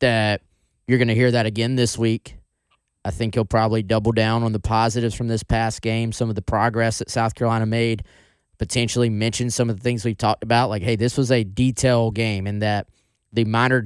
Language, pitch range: English, 105-120 Hz